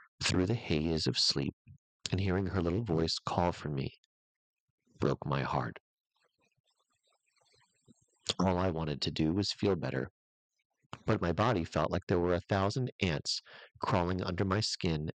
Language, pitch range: English, 80-100 Hz